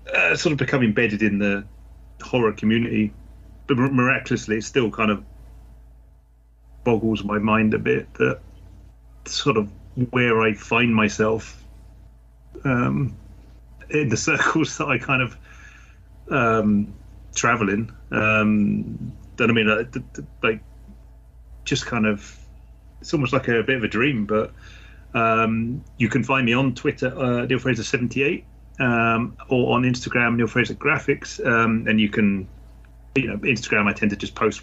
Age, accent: 30-49, British